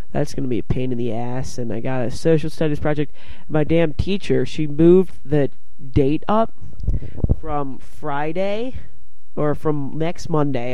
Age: 20-39